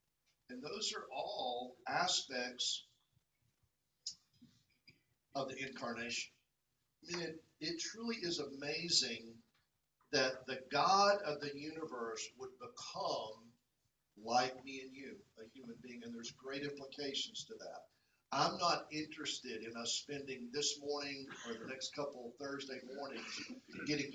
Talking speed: 130 wpm